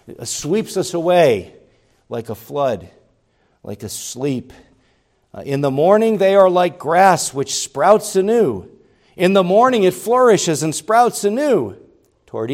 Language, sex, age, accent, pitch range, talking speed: English, male, 50-69, American, 110-150 Hz, 135 wpm